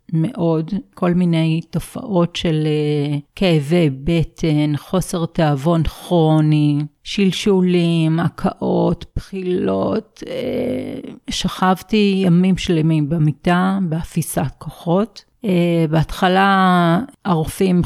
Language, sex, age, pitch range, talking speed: Hebrew, female, 40-59, 160-195 Hz, 70 wpm